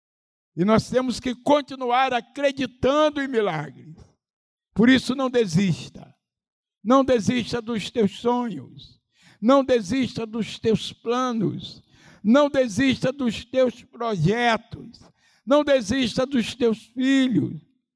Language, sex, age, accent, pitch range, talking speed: Portuguese, male, 60-79, Brazilian, 205-255 Hz, 105 wpm